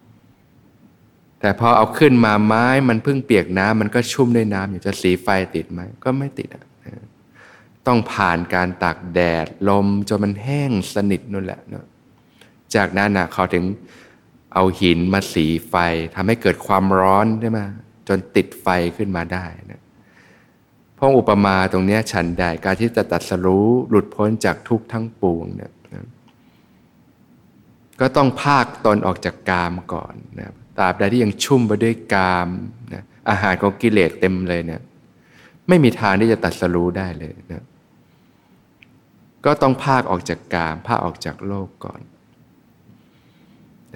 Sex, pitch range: male, 90-115 Hz